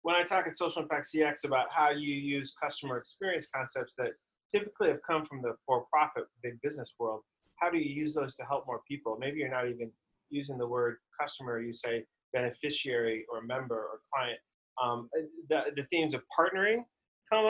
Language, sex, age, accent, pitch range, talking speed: English, male, 30-49, American, 125-160 Hz, 190 wpm